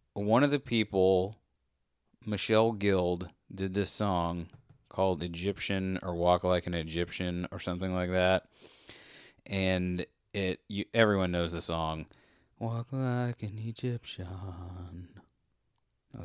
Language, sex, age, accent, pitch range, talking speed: English, male, 30-49, American, 90-120 Hz, 120 wpm